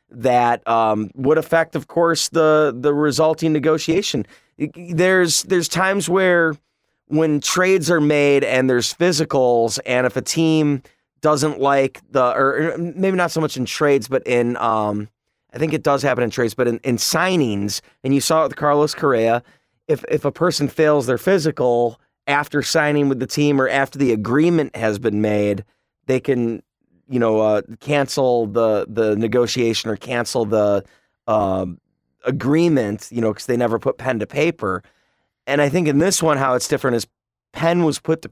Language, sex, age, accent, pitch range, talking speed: English, male, 30-49, American, 120-160 Hz, 175 wpm